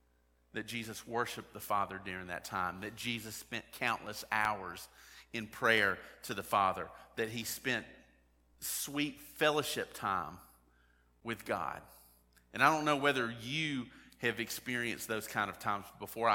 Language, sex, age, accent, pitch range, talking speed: English, male, 40-59, American, 85-130 Hz, 145 wpm